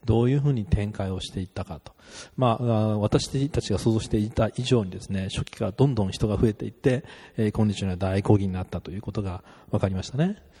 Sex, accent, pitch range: male, native, 100-125 Hz